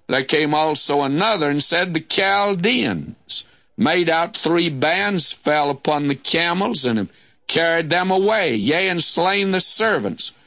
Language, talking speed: English, 145 wpm